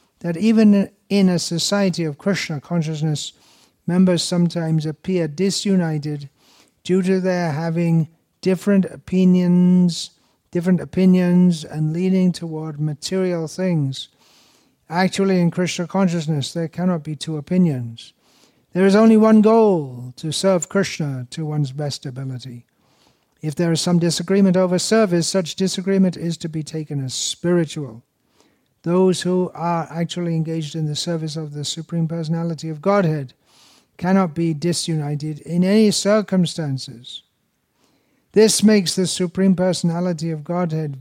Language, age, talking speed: English, 60-79, 125 wpm